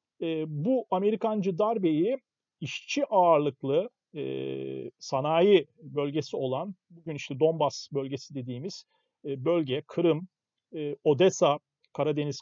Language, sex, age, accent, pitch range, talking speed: Turkish, male, 40-59, native, 140-190 Hz, 100 wpm